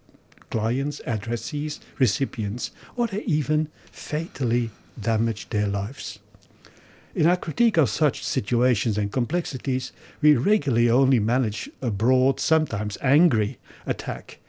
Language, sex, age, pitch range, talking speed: English, male, 60-79, 110-140 Hz, 110 wpm